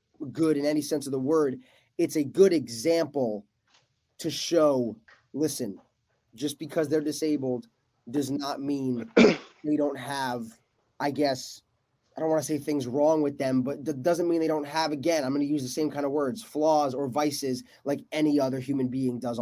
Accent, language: American, English